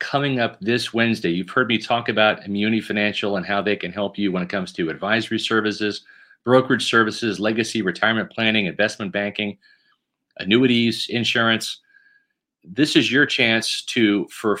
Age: 40-59